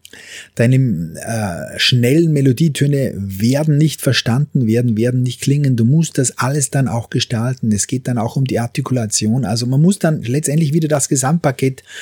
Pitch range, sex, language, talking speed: 115-145 Hz, male, German, 165 wpm